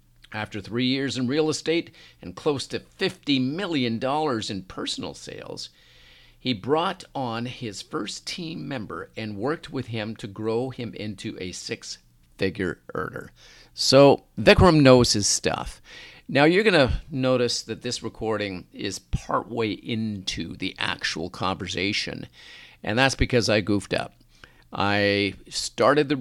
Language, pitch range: English, 95-125 Hz